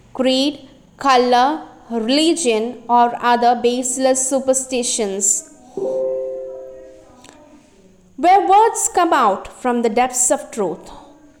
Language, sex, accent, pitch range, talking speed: English, female, Indian, 240-315 Hz, 85 wpm